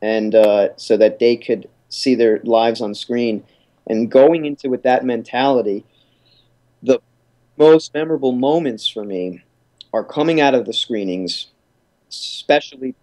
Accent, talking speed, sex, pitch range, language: American, 140 wpm, male, 115-140 Hz, English